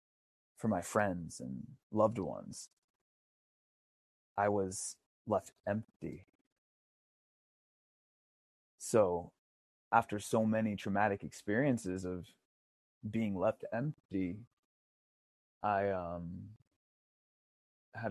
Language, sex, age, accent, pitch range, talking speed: English, male, 20-39, American, 90-110 Hz, 75 wpm